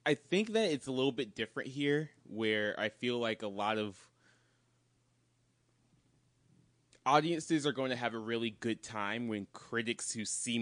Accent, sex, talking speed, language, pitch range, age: American, male, 165 wpm, English, 95-115 Hz, 20-39